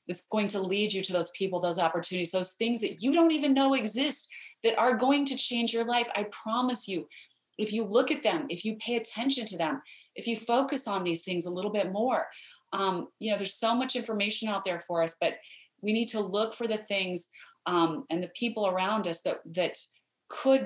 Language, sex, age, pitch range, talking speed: English, female, 30-49, 185-235 Hz, 225 wpm